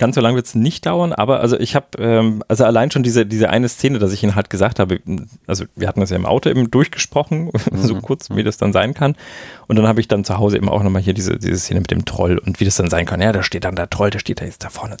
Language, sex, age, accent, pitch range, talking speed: German, male, 40-59, German, 105-135 Hz, 305 wpm